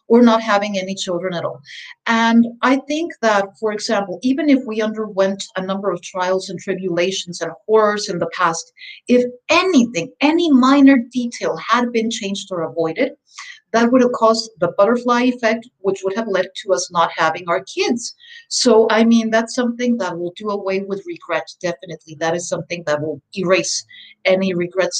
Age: 50-69